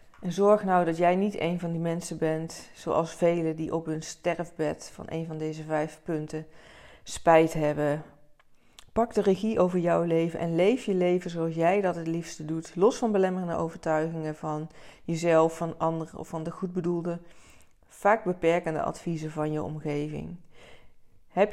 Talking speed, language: 170 wpm, Dutch